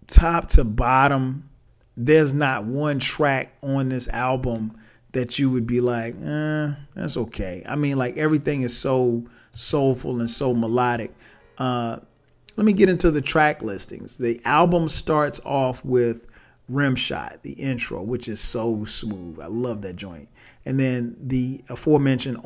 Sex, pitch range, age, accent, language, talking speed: male, 120-150 Hz, 40-59, American, English, 150 wpm